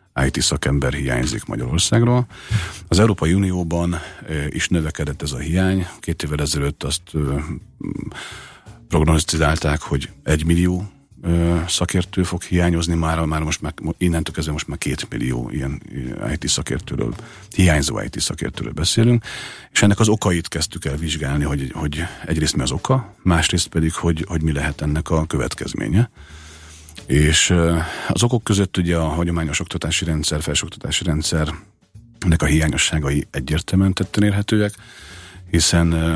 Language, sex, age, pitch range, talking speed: Hungarian, male, 50-69, 75-90 Hz, 125 wpm